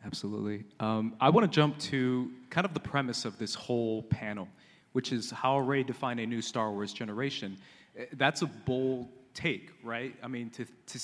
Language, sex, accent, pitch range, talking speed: English, male, American, 110-135 Hz, 185 wpm